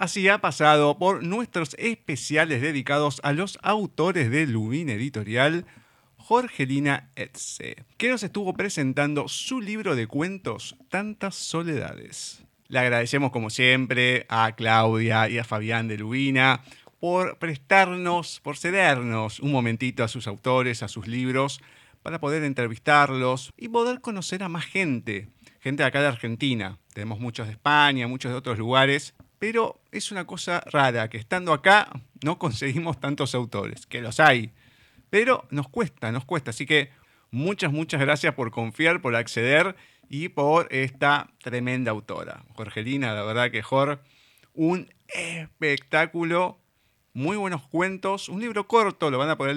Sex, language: male, Spanish